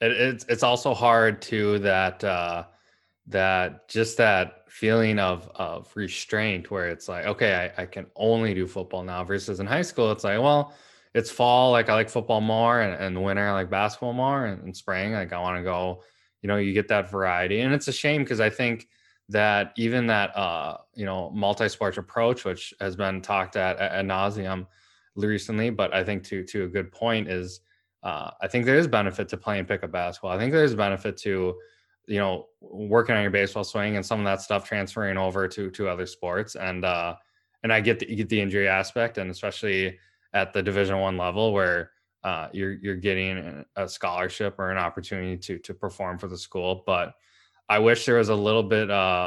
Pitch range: 95-110 Hz